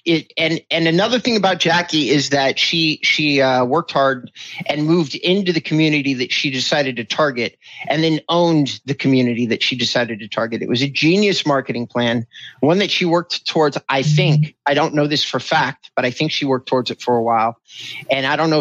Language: English